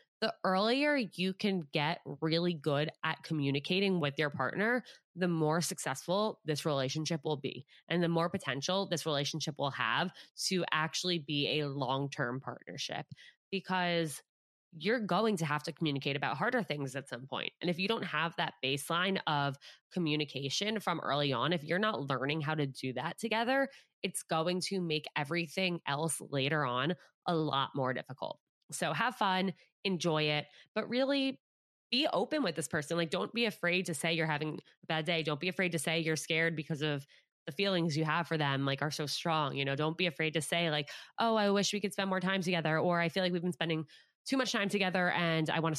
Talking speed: 200 wpm